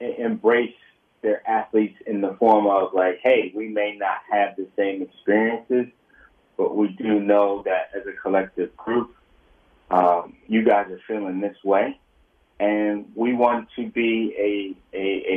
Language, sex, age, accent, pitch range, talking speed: English, male, 30-49, American, 100-135 Hz, 155 wpm